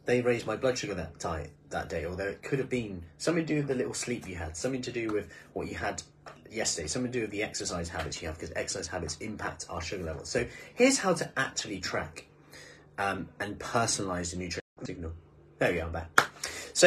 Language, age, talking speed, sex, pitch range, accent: English, 30-49, 230 wpm, male, 90-150 Hz, British